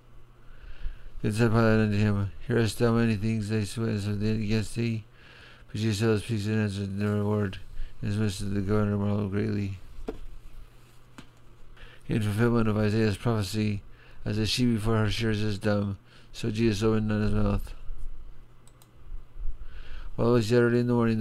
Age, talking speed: 50-69, 160 wpm